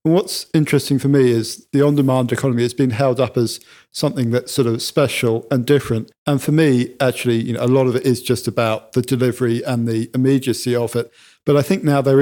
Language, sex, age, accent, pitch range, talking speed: English, male, 50-69, British, 120-135 Hz, 220 wpm